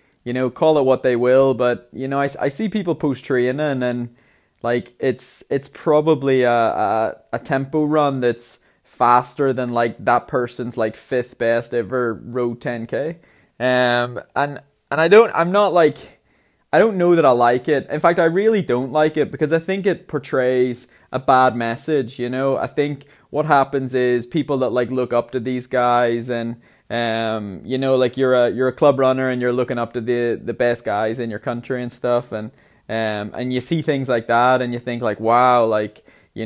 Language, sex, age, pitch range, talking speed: English, male, 20-39, 120-140 Hz, 205 wpm